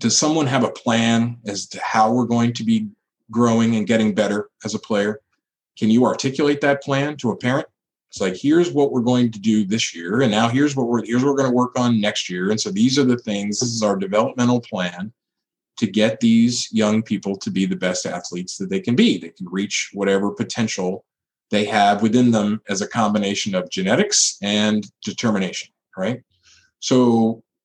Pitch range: 100-125 Hz